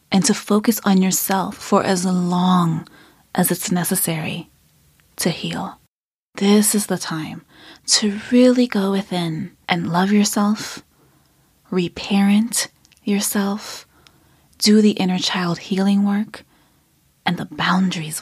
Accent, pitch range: American, 180-225 Hz